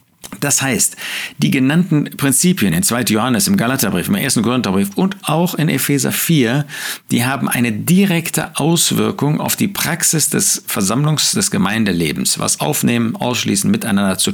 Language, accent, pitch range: German, German, 100-155 Hz